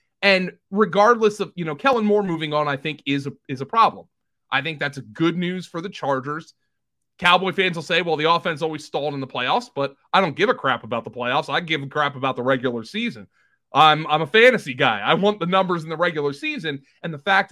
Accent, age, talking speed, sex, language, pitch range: American, 30-49, 240 wpm, male, English, 140-190 Hz